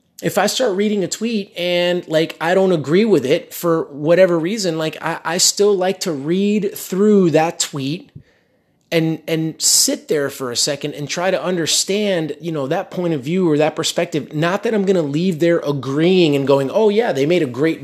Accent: American